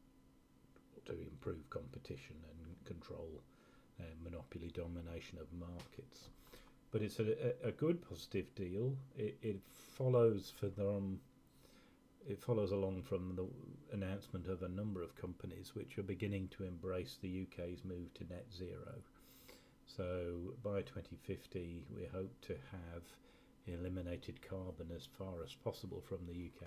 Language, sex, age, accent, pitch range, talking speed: English, male, 40-59, British, 85-105 Hz, 135 wpm